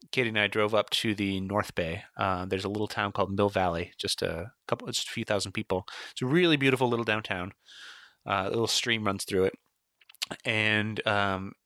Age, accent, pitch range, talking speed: 30-49, American, 100-130 Hz, 205 wpm